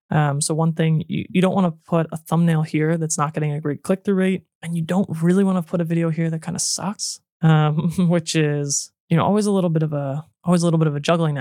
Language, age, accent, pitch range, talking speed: English, 20-39, American, 145-170 Hz, 280 wpm